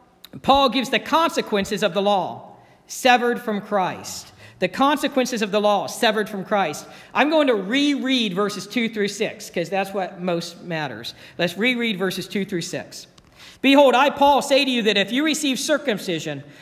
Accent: American